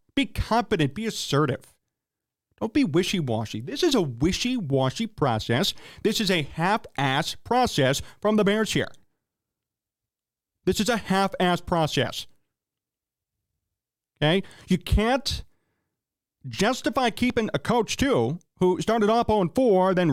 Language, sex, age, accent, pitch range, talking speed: English, male, 40-59, American, 155-215 Hz, 120 wpm